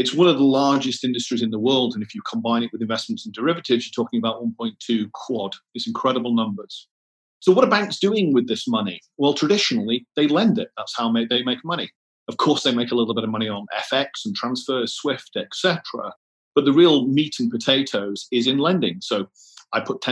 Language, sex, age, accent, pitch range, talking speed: English, male, 40-59, British, 115-155 Hz, 215 wpm